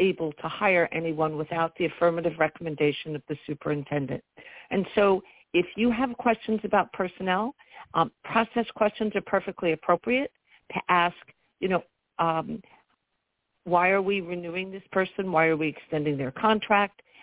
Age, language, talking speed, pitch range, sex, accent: 50-69, English, 145 wpm, 165-200 Hz, female, American